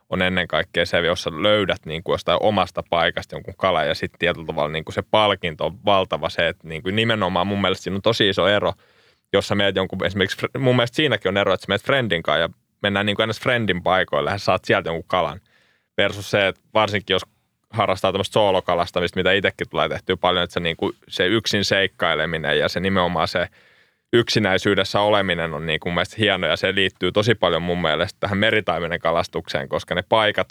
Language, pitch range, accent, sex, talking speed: Finnish, 90-105 Hz, native, male, 195 wpm